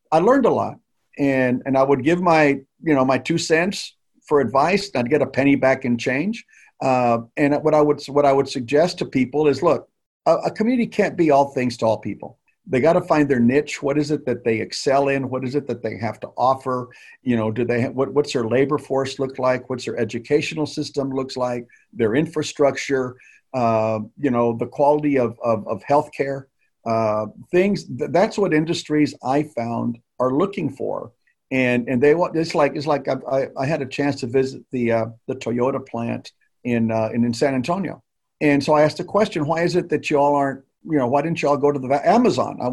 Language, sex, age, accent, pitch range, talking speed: English, male, 50-69, American, 125-150 Hz, 225 wpm